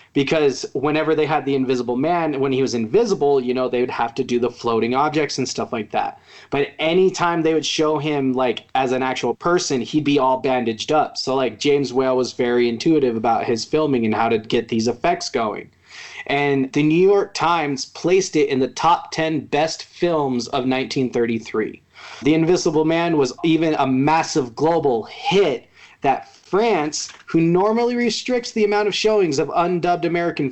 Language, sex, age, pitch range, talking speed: English, male, 30-49, 135-170 Hz, 185 wpm